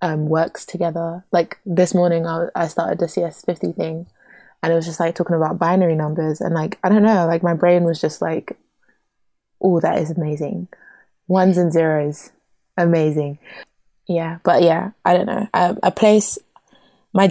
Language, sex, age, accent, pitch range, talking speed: English, female, 20-39, British, 165-205 Hz, 175 wpm